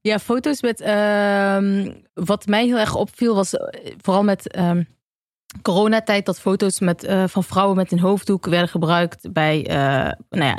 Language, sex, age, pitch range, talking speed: Dutch, female, 30-49, 170-200 Hz, 165 wpm